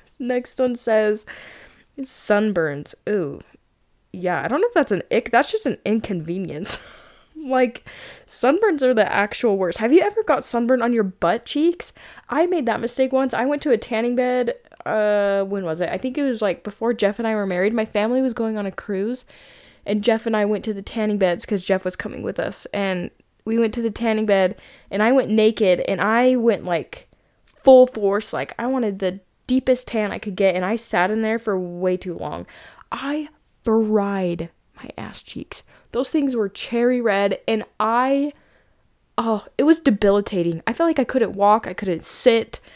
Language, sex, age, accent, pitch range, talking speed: English, female, 10-29, American, 200-250 Hz, 200 wpm